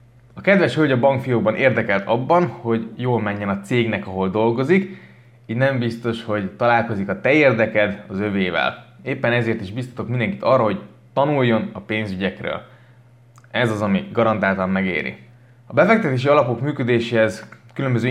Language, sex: Hungarian, male